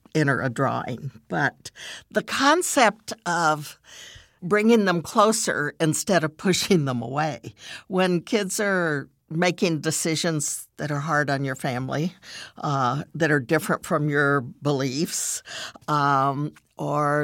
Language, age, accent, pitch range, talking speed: English, 60-79, American, 145-185 Hz, 120 wpm